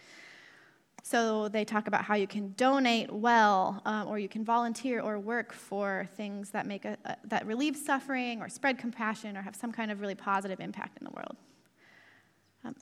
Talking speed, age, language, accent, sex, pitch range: 185 wpm, 20-39, English, American, female, 205-260 Hz